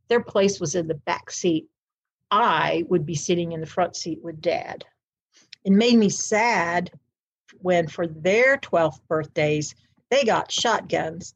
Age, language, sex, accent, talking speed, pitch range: 60-79, English, female, American, 155 wpm, 165-215 Hz